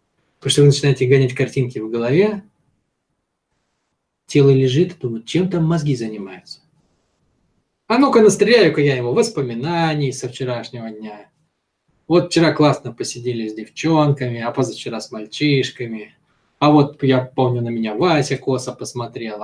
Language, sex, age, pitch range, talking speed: Russian, male, 20-39, 125-160 Hz, 135 wpm